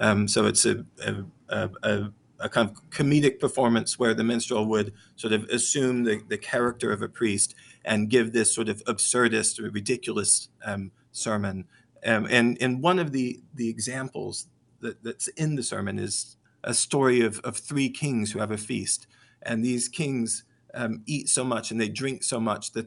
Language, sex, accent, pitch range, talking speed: English, male, American, 110-125 Hz, 190 wpm